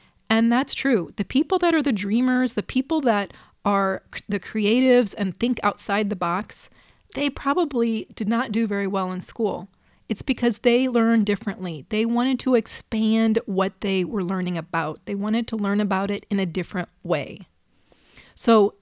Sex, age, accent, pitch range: female, 30-49, American, 195-240 Hz